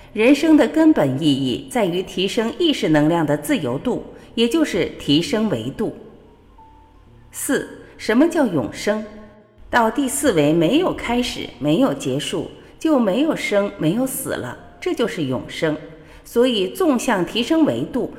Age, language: 50-69, Chinese